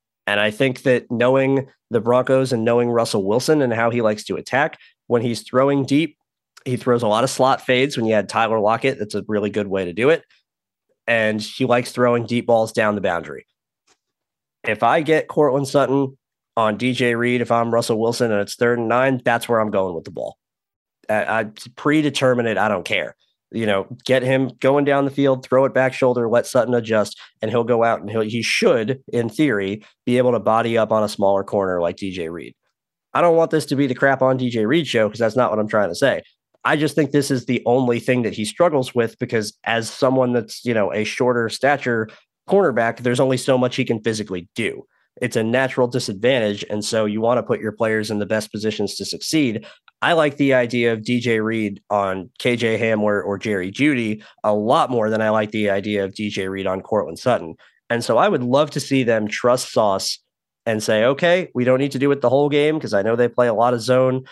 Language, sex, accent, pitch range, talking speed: English, male, American, 110-130 Hz, 225 wpm